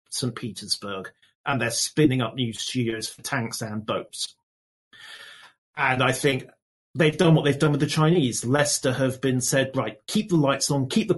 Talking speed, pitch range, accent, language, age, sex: 180 wpm, 120-155 Hz, British, English, 40-59, male